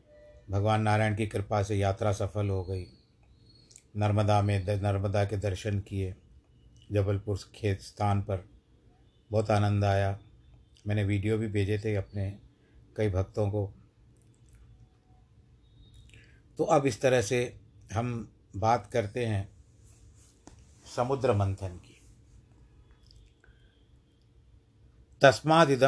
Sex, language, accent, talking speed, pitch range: male, Hindi, native, 100 wpm, 100-115 Hz